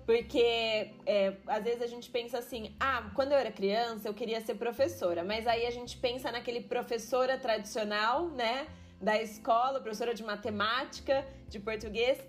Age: 20-39